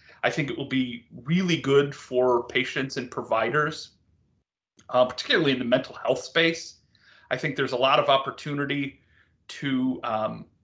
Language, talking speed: English, 150 wpm